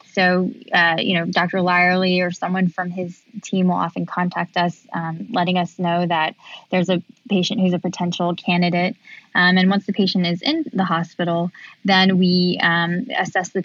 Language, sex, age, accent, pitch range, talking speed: English, female, 10-29, American, 175-190 Hz, 180 wpm